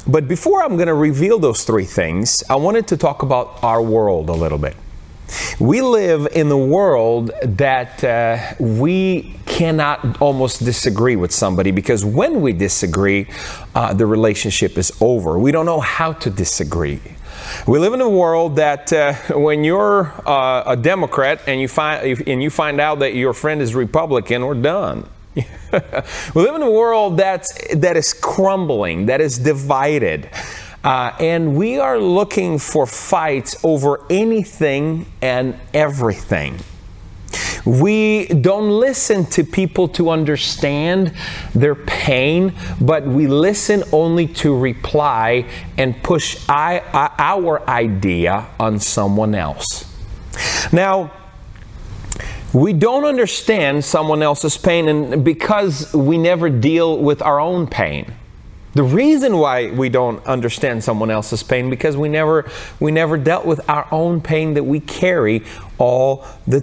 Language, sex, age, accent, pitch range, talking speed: English, male, 30-49, American, 115-165 Hz, 140 wpm